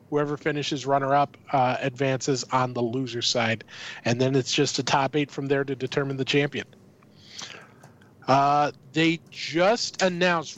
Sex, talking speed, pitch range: male, 140 wpm, 130-150 Hz